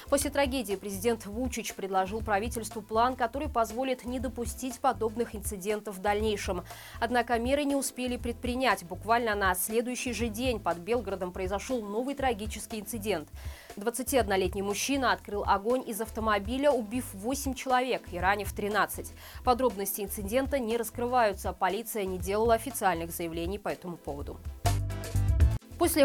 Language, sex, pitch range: Russian, female, 200-255 Hz